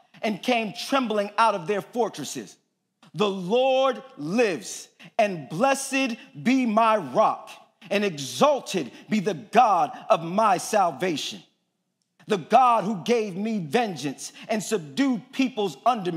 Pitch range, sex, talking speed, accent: 185-235 Hz, male, 125 wpm, American